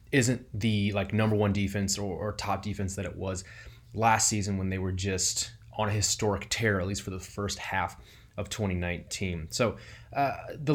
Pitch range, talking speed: 100-115 Hz, 190 wpm